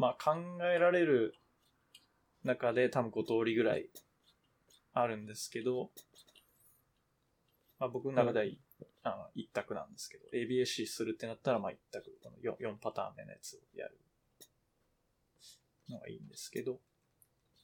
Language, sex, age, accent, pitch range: Japanese, male, 20-39, native, 115-175 Hz